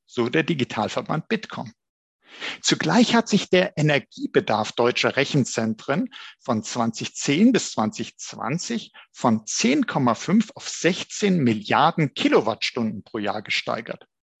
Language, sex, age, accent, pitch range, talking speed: German, male, 50-69, German, 120-200 Hz, 100 wpm